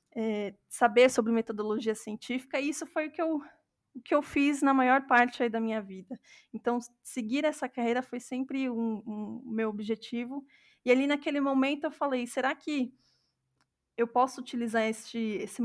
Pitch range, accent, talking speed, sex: 220-255 Hz, Brazilian, 175 wpm, female